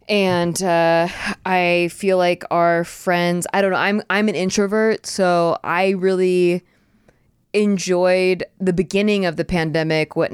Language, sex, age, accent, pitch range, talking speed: English, female, 20-39, American, 155-185 Hz, 140 wpm